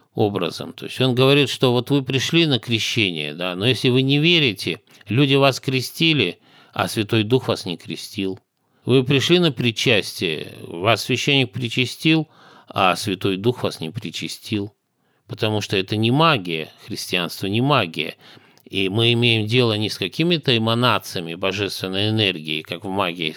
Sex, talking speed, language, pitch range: male, 150 wpm, Russian, 95-130 Hz